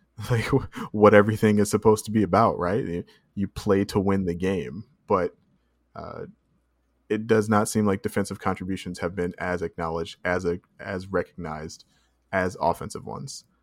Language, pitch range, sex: English, 90-105 Hz, male